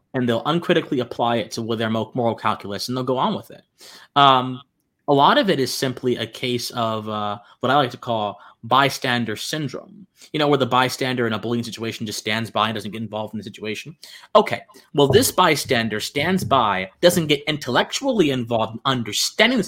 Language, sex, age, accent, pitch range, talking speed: English, male, 30-49, American, 115-160 Hz, 200 wpm